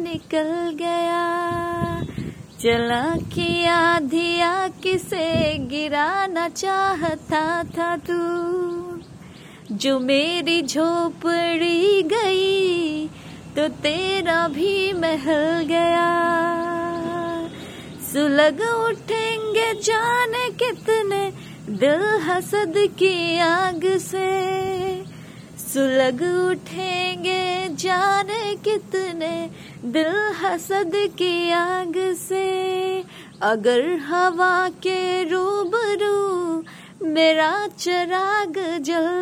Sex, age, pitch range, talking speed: female, 20-39, 335-380 Hz, 65 wpm